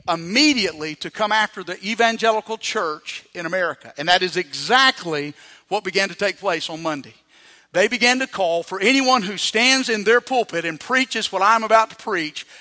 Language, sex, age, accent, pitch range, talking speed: English, male, 50-69, American, 175-245 Hz, 180 wpm